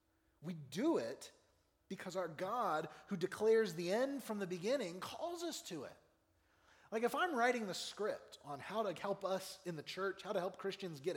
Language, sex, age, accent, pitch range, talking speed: English, male, 30-49, American, 150-225 Hz, 195 wpm